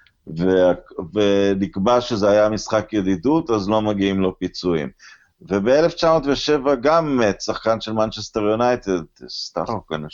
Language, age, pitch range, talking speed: Hebrew, 50-69, 95-110 Hz, 110 wpm